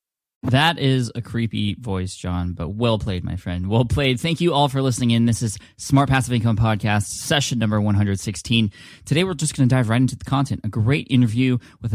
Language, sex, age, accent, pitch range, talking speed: English, male, 20-39, American, 100-125 Hz, 210 wpm